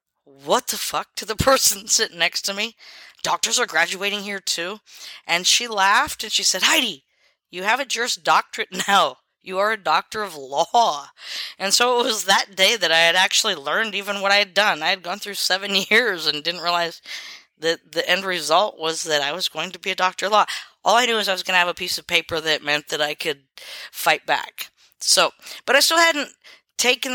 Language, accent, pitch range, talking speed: English, American, 170-220 Hz, 220 wpm